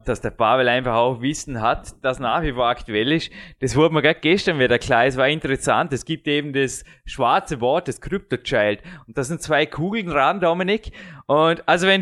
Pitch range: 145-195 Hz